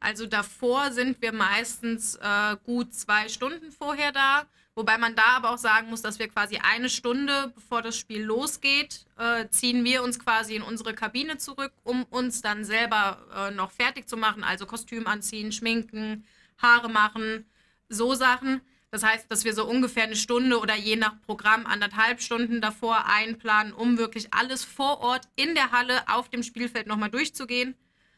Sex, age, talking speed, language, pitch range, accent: female, 20-39, 175 wpm, German, 215-245 Hz, German